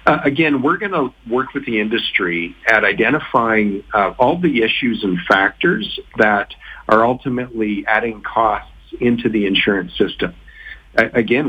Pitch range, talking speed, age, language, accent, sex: 105-130 Hz, 145 wpm, 50-69, English, American, male